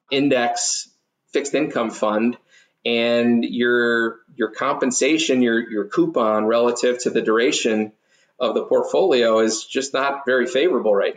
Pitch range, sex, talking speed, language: 115-130 Hz, male, 130 wpm, English